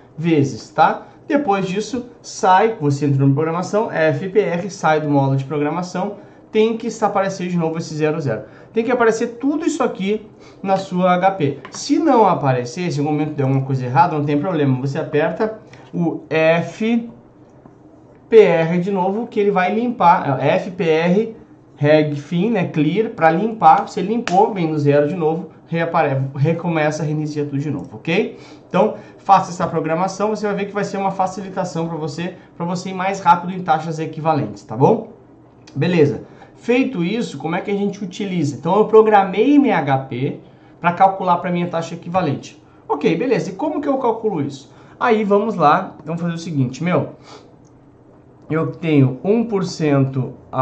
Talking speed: 165 wpm